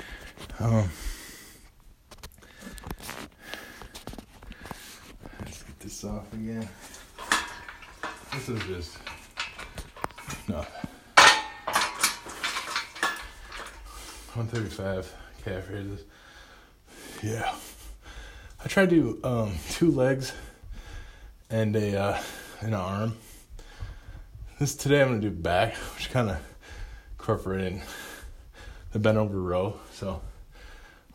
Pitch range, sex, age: 95-120 Hz, male, 20-39